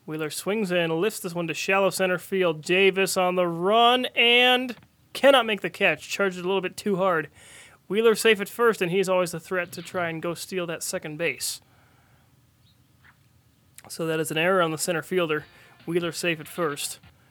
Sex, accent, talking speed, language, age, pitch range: male, American, 190 wpm, English, 20-39, 150-195 Hz